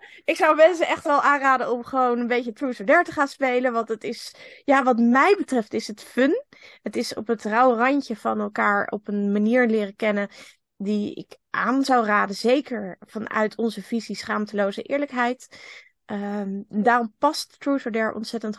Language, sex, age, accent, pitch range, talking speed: Dutch, female, 20-39, Dutch, 200-245 Hz, 180 wpm